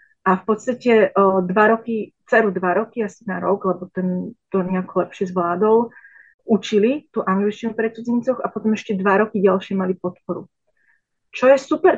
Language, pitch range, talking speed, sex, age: Slovak, 185-220 Hz, 170 wpm, female, 30-49